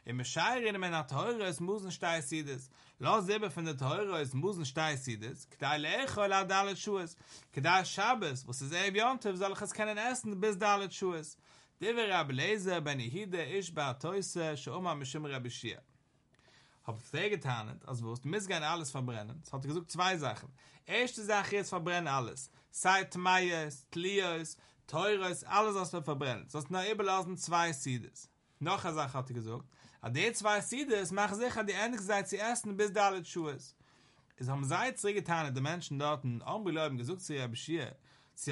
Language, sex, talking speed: English, male, 180 wpm